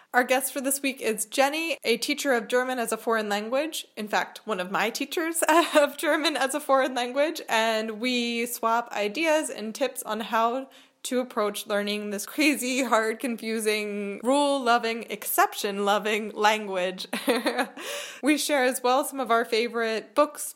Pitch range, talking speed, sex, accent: 210-270 Hz, 165 wpm, female, American